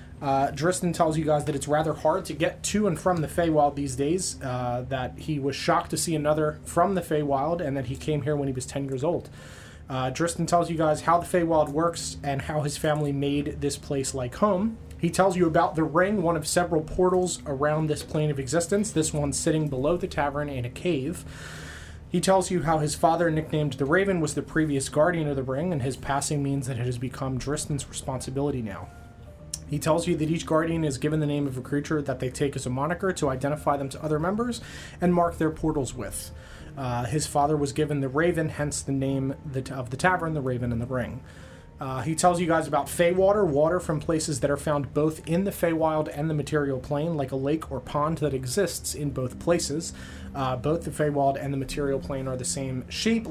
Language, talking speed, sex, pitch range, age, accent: English, 225 wpm, male, 135-165 Hz, 20-39, American